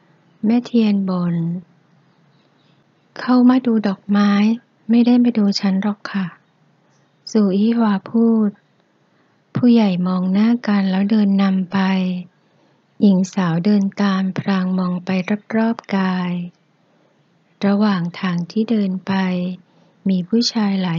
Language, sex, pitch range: Thai, female, 180-210 Hz